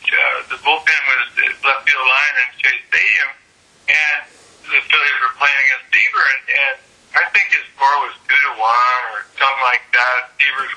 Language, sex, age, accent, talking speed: English, male, 50-69, American, 165 wpm